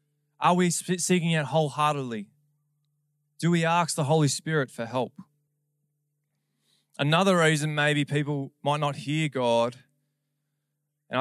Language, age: English, 20-39